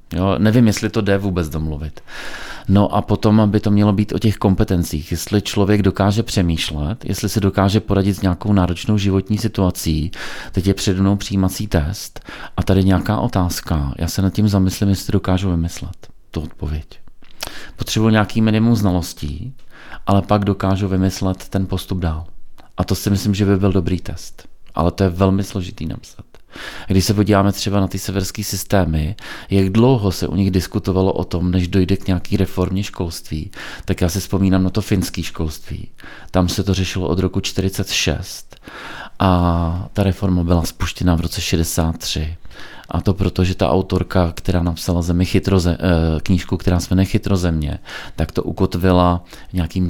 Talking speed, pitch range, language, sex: 165 wpm, 90-100 Hz, Czech, male